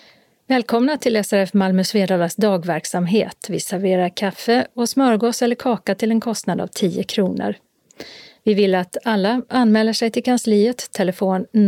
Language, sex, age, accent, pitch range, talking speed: Swedish, female, 40-59, native, 190-230 Hz, 145 wpm